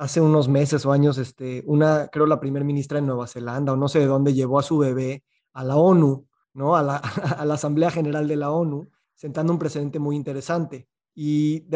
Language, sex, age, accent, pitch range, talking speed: Spanish, male, 30-49, Mexican, 145-185 Hz, 220 wpm